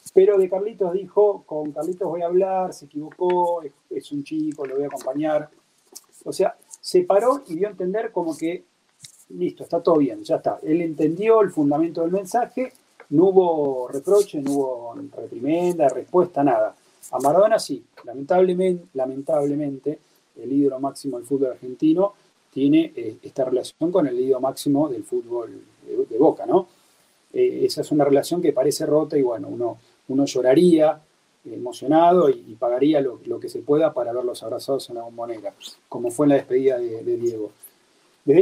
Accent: Argentinian